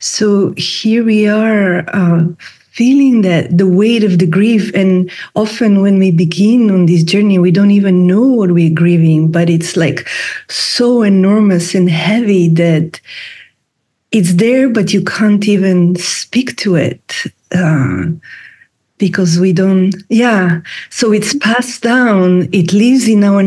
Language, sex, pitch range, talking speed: English, female, 175-210 Hz, 145 wpm